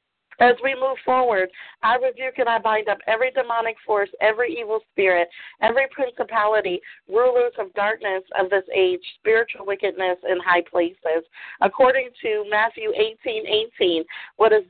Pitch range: 195-255 Hz